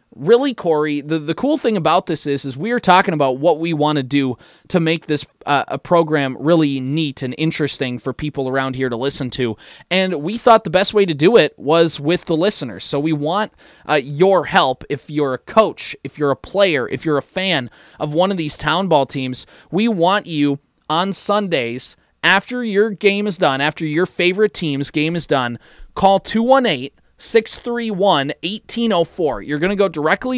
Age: 20-39